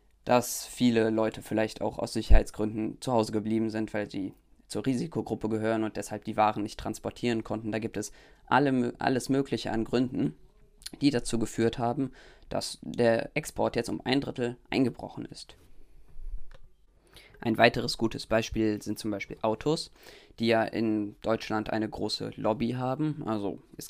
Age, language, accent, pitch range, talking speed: 20-39, German, German, 110-125 Hz, 155 wpm